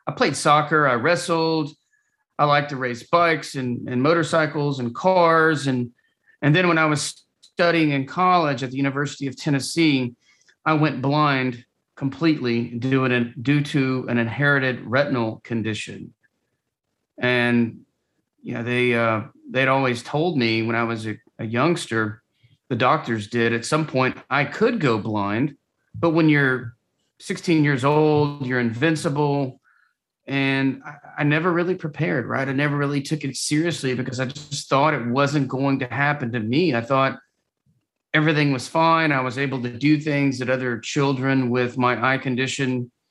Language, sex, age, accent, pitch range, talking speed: English, male, 40-59, American, 120-150 Hz, 155 wpm